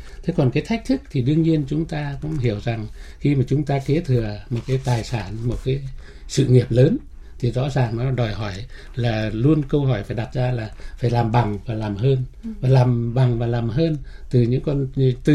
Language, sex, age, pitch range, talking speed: Vietnamese, male, 60-79, 120-155 Hz, 225 wpm